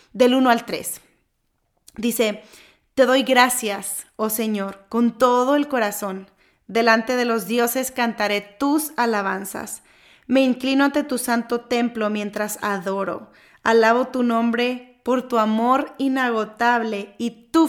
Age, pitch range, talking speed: 20-39, 215-260 Hz, 130 wpm